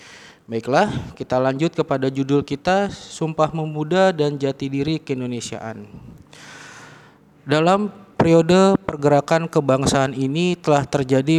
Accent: native